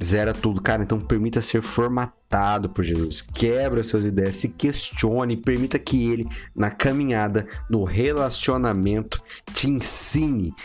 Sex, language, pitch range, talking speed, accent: male, Portuguese, 105-145 Hz, 130 wpm, Brazilian